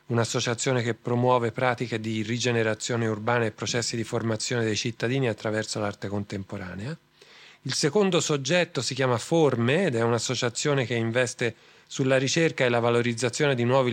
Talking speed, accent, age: 145 wpm, native, 40-59